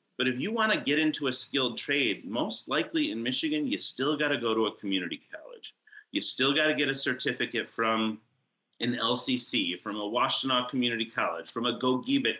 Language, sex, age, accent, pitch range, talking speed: English, male, 30-49, American, 115-155 Hz, 200 wpm